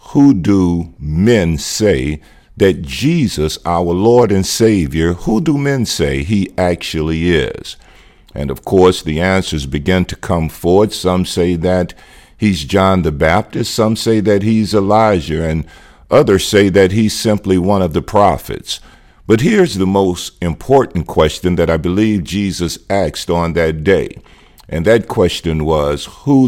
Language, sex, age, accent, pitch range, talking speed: English, male, 50-69, American, 80-105 Hz, 150 wpm